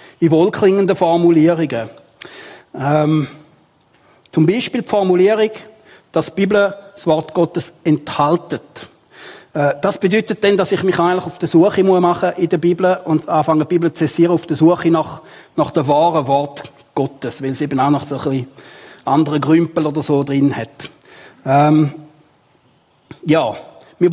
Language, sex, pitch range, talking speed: German, male, 145-185 Hz, 155 wpm